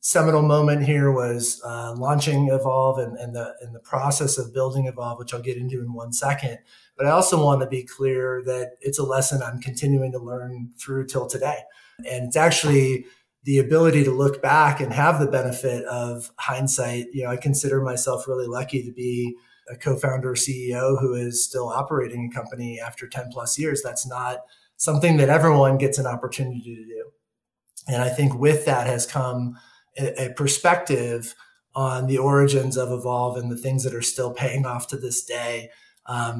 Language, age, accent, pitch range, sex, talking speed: English, 30-49, American, 120-140 Hz, male, 190 wpm